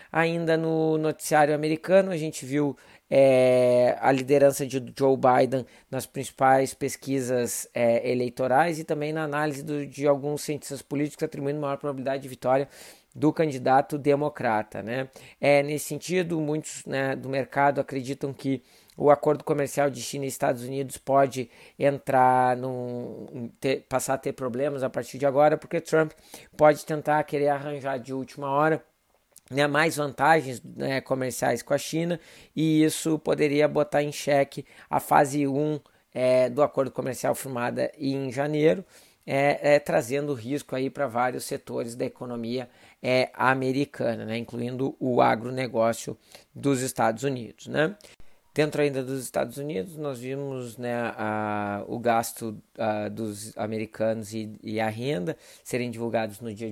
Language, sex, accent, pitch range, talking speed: Portuguese, male, Brazilian, 125-145 Hz, 140 wpm